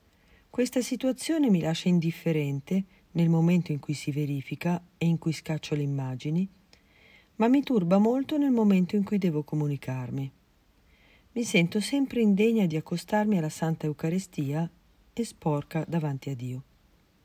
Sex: female